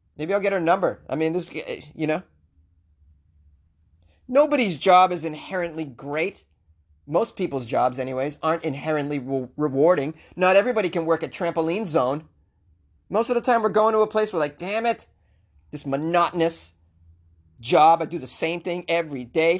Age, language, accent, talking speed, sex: 30-49, English, American, 155 wpm, male